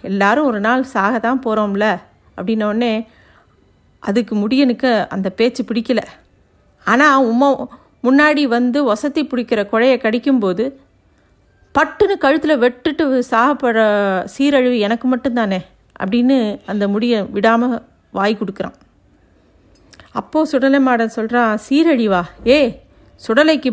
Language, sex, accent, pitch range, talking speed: Tamil, female, native, 220-265 Hz, 105 wpm